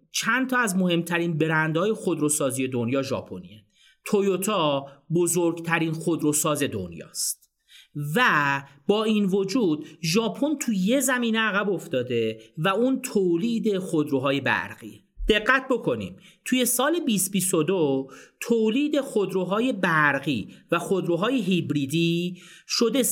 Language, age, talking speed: Persian, 40-59, 100 wpm